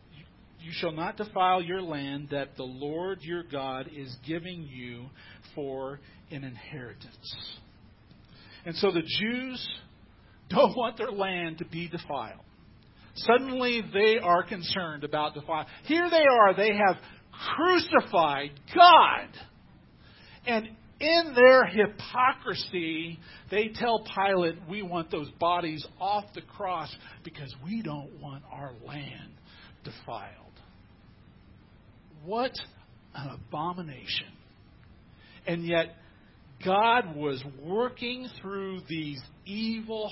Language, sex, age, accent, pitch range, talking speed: English, male, 50-69, American, 140-200 Hz, 110 wpm